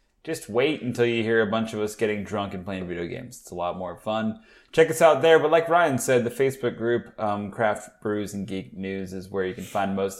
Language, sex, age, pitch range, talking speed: English, male, 20-39, 105-120 Hz, 255 wpm